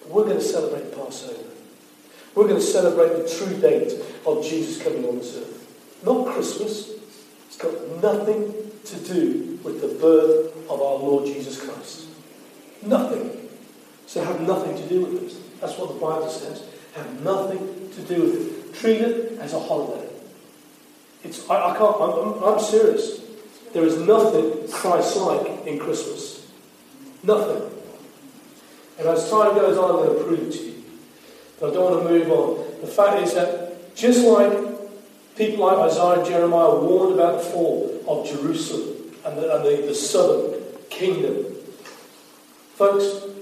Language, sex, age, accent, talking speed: English, male, 40-59, British, 160 wpm